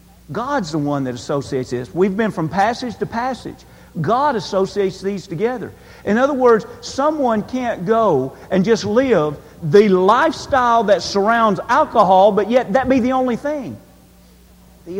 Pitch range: 145-220 Hz